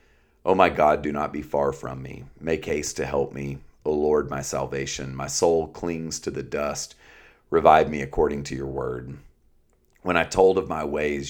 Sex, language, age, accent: male, English, 40-59, American